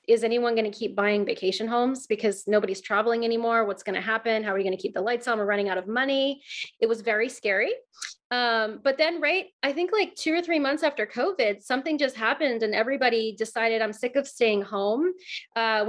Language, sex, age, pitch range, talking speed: English, female, 30-49, 225-280 Hz, 225 wpm